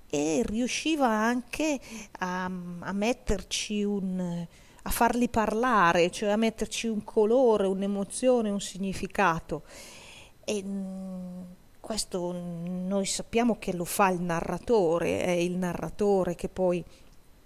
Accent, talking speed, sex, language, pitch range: native, 110 wpm, female, Italian, 175-220 Hz